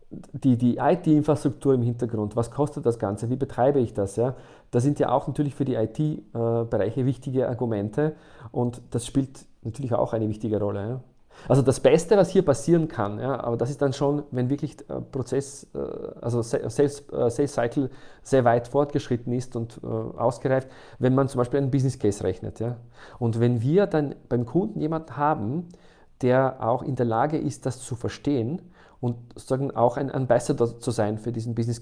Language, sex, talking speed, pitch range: German, male, 180 wpm, 115-145 Hz